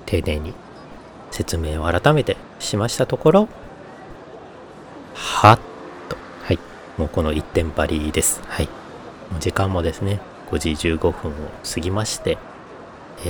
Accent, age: native, 40-59